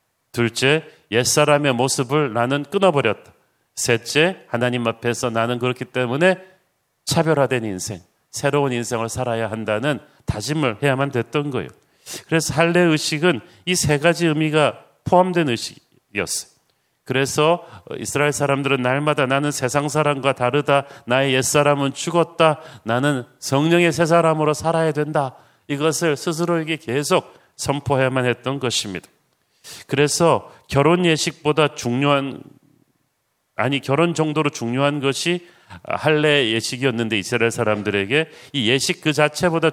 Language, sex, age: Korean, male, 40-59